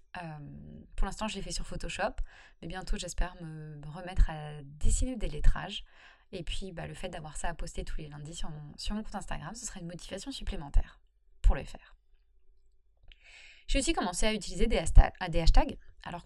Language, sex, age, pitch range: French, female, 20-39, 160-220 Hz